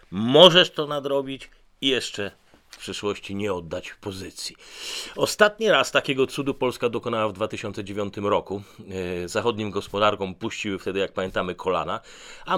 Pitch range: 100-140 Hz